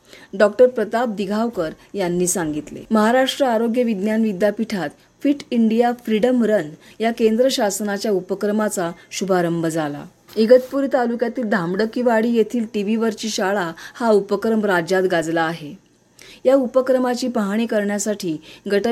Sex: female